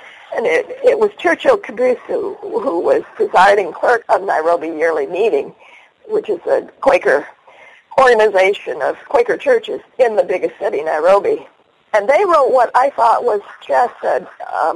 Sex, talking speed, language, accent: female, 155 wpm, English, American